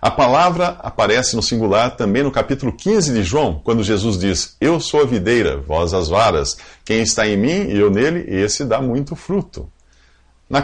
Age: 50-69